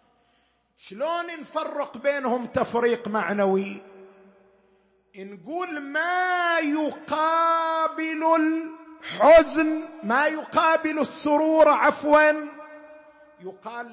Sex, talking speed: male, 60 wpm